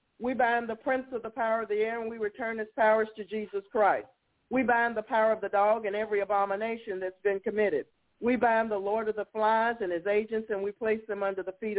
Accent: American